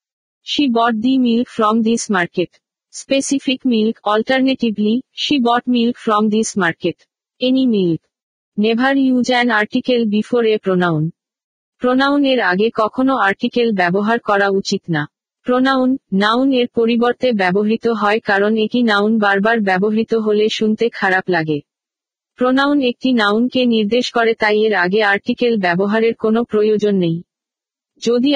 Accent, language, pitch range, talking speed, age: native, Bengali, 210-250 Hz, 130 wpm, 50-69